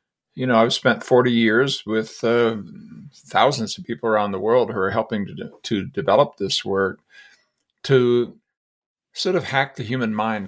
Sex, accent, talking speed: male, American, 170 wpm